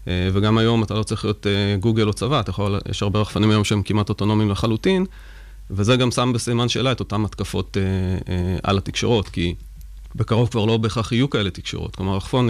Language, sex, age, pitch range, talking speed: Hebrew, male, 30-49, 100-130 Hz, 205 wpm